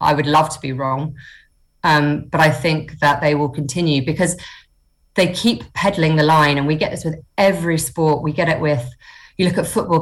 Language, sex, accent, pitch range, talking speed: English, female, British, 140-165 Hz, 210 wpm